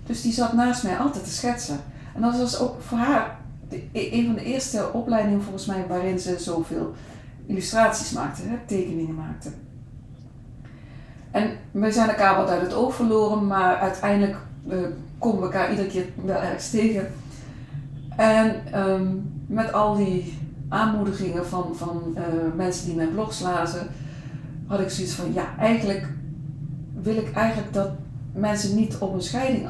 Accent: Dutch